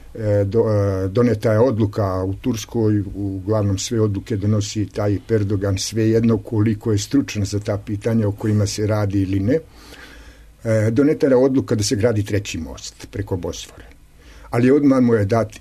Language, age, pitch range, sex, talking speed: English, 50-69, 100-115 Hz, male, 160 wpm